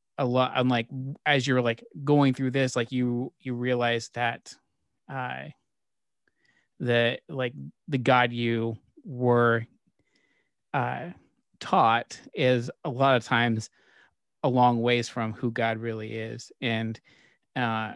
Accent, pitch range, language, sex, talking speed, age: American, 115-125 Hz, English, male, 130 wpm, 30-49